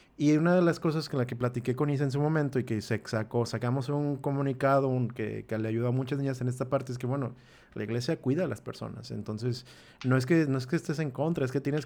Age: 30-49